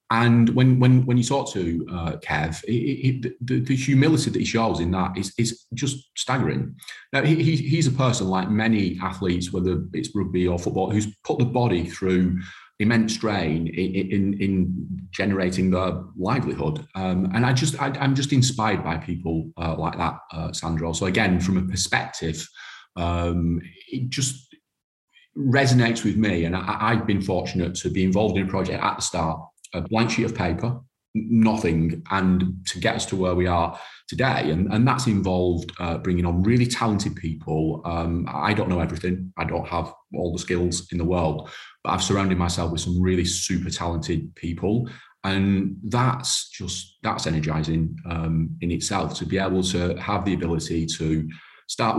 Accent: British